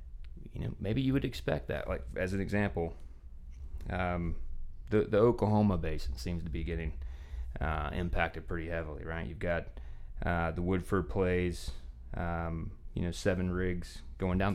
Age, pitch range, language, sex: 30-49, 65-90 Hz, English, male